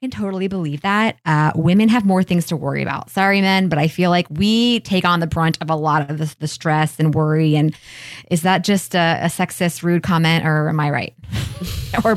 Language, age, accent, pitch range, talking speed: English, 20-39, American, 160-215 Hz, 225 wpm